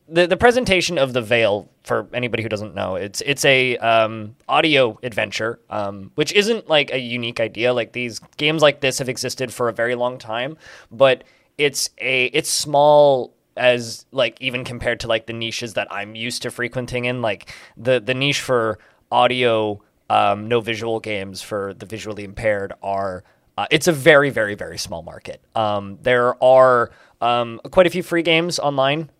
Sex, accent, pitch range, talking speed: male, American, 110-140 Hz, 180 wpm